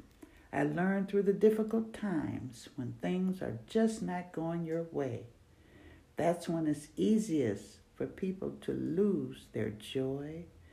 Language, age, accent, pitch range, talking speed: English, 60-79, American, 150-215 Hz, 135 wpm